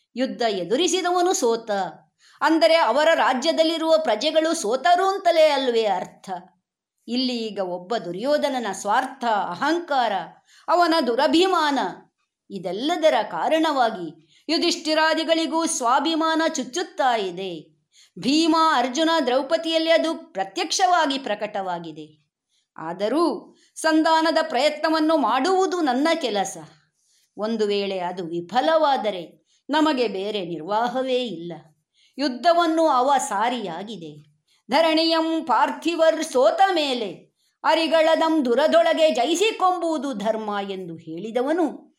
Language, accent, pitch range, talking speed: Kannada, native, 195-320 Hz, 85 wpm